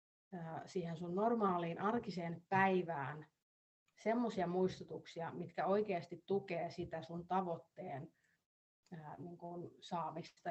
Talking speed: 85 wpm